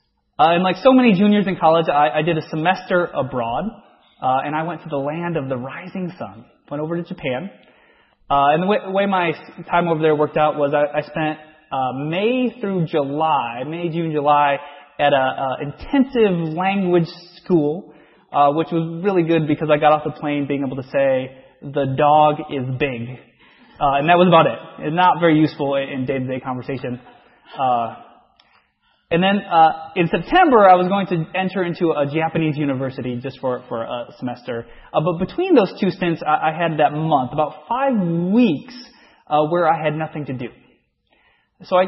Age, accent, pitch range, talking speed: 20-39, American, 145-185 Hz, 190 wpm